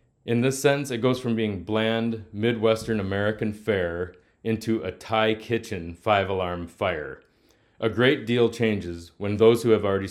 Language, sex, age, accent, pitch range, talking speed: English, male, 30-49, American, 95-120 Hz, 160 wpm